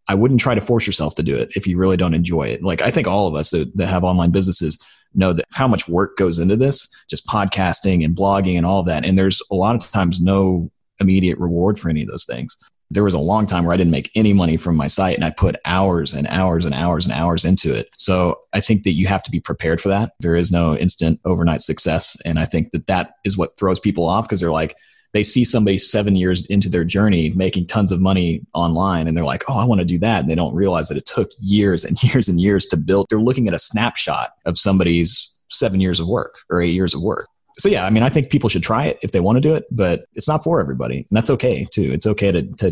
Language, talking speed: English, 270 wpm